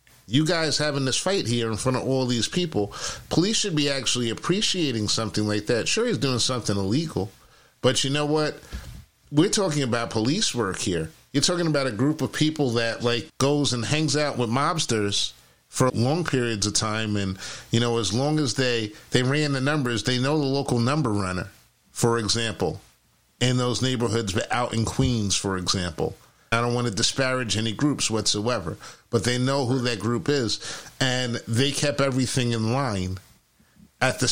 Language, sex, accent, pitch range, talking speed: English, male, American, 115-145 Hz, 185 wpm